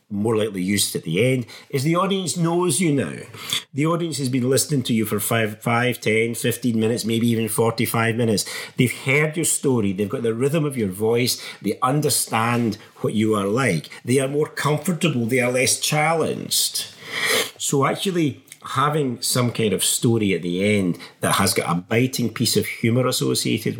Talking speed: 185 wpm